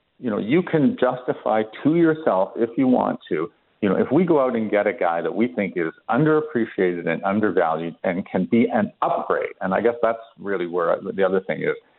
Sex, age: male, 50-69